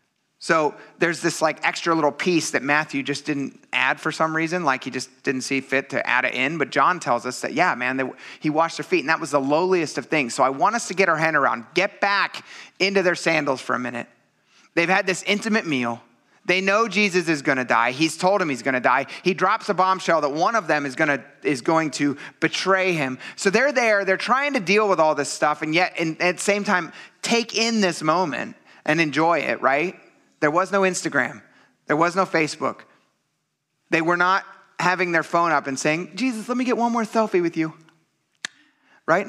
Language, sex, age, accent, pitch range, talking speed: English, male, 30-49, American, 140-185 Hz, 225 wpm